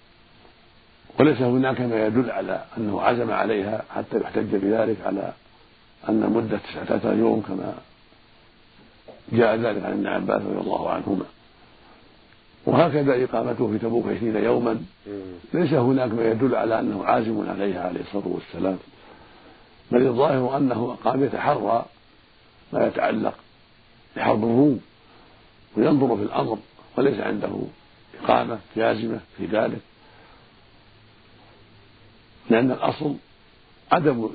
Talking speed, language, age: 110 wpm, Arabic, 50-69